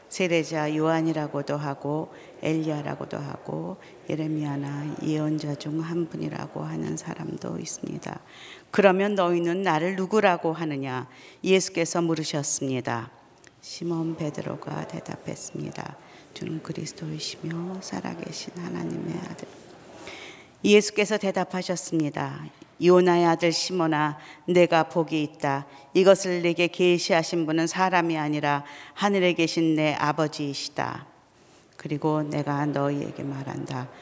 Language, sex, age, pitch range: Korean, female, 40-59, 150-180 Hz